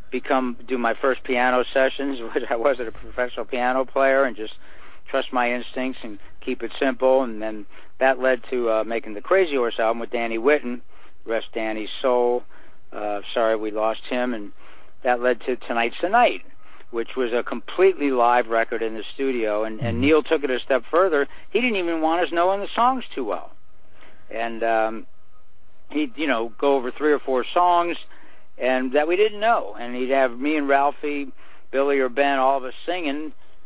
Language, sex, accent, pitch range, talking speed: English, male, American, 115-140 Hz, 190 wpm